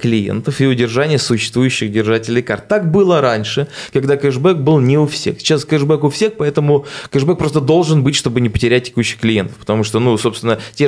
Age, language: 20-39, Russian